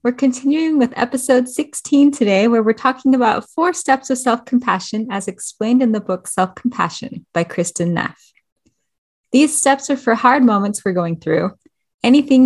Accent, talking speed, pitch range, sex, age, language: American, 160 wpm, 195-255 Hz, female, 20-39, English